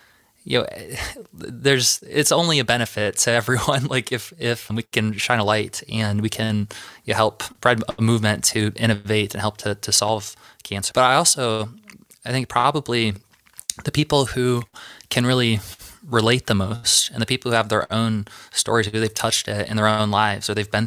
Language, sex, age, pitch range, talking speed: English, male, 20-39, 105-120 Hz, 185 wpm